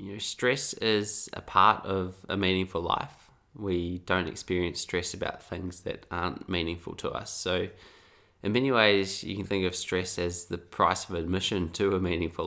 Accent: Australian